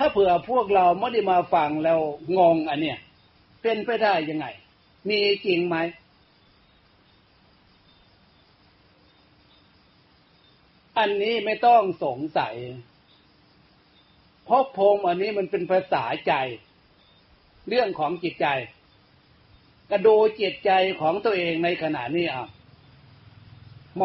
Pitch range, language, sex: 155-200 Hz, Thai, male